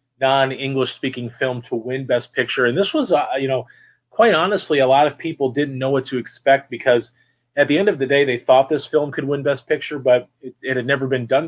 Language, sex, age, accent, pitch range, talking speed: English, male, 30-49, American, 120-140 Hz, 240 wpm